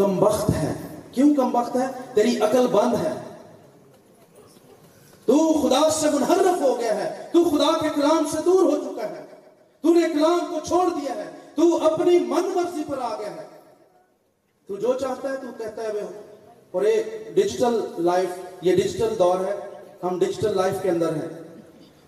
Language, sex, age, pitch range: Urdu, male, 40-59, 195-315 Hz